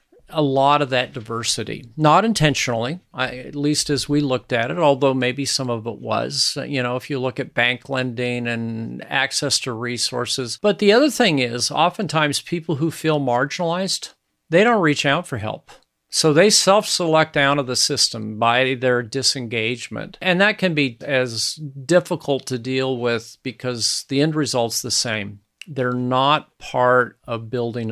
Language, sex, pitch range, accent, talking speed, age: English, male, 120-150 Hz, American, 170 wpm, 50-69